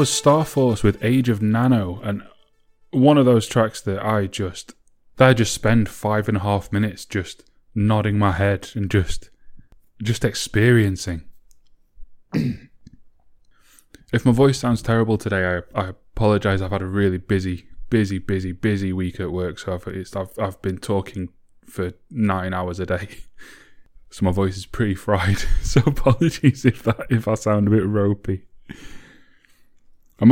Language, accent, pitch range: English, British, 95-115 Hz